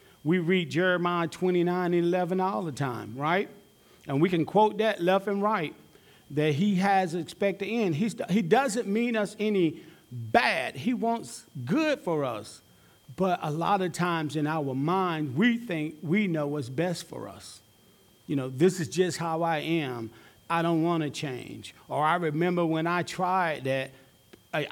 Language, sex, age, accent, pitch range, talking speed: English, male, 40-59, American, 150-200 Hz, 175 wpm